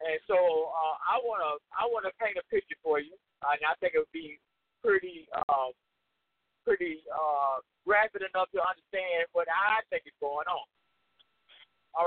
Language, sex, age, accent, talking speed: English, male, 50-69, American, 170 wpm